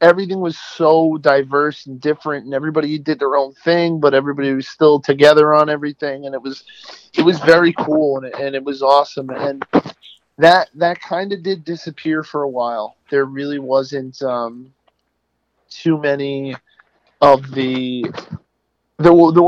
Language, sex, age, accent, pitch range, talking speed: English, male, 40-59, American, 135-160 Hz, 155 wpm